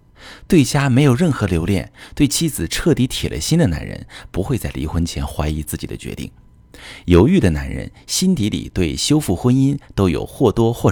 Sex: male